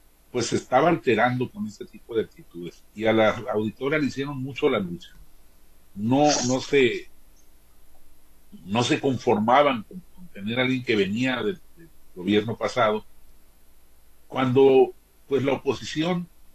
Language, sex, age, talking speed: Spanish, male, 50-69, 140 wpm